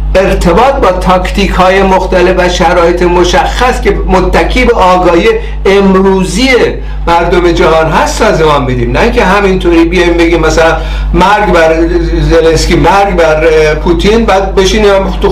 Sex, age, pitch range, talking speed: male, 50-69, 165-200 Hz, 130 wpm